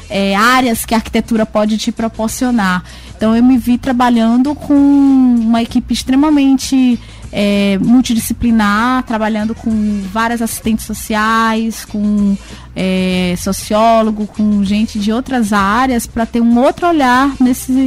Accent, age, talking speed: Brazilian, 20-39, 120 wpm